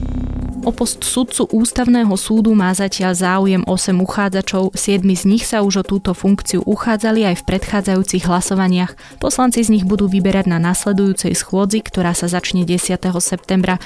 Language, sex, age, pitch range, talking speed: Slovak, female, 20-39, 180-200 Hz, 155 wpm